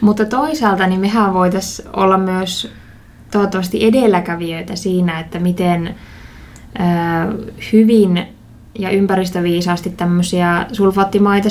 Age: 20-39